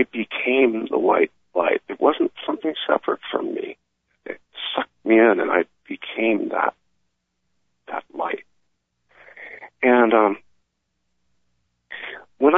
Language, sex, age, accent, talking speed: English, male, 50-69, American, 110 wpm